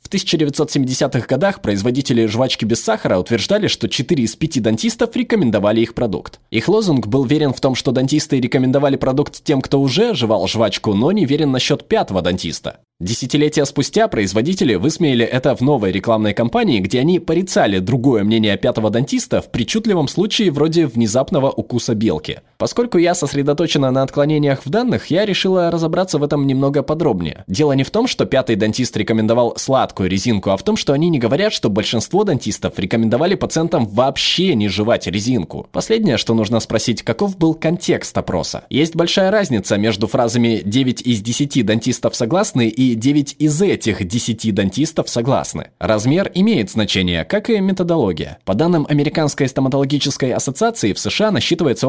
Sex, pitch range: male, 115-155 Hz